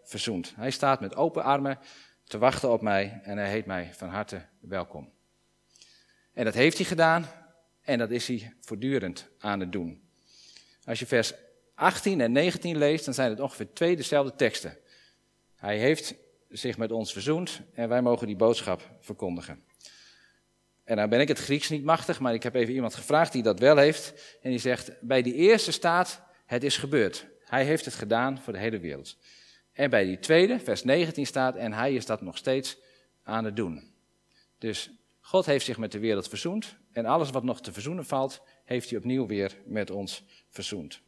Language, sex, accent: Dutch, male, Dutch